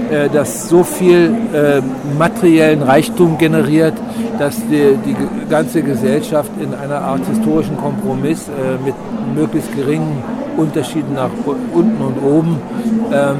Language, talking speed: German, 120 wpm